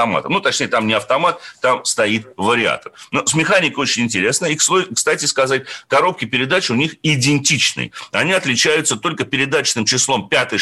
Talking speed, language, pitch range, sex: 160 wpm, Russian, 115-160 Hz, male